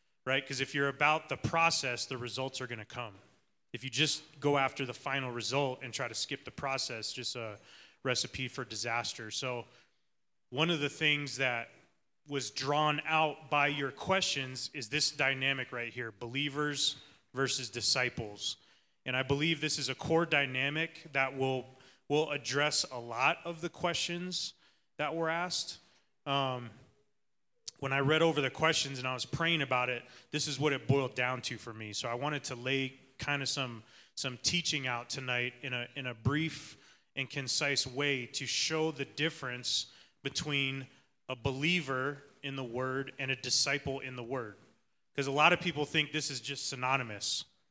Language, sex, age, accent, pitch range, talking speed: English, male, 30-49, American, 125-150 Hz, 175 wpm